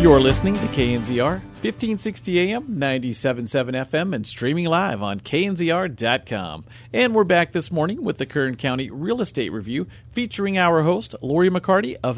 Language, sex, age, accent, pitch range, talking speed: English, male, 40-59, American, 120-175 Hz, 155 wpm